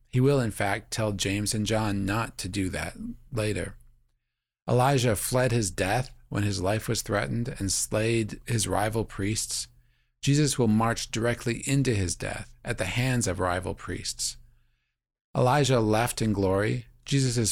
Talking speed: 155 wpm